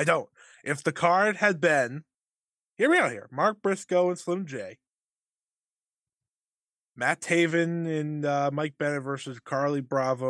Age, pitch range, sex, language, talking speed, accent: 20-39, 120-155 Hz, male, English, 145 wpm, American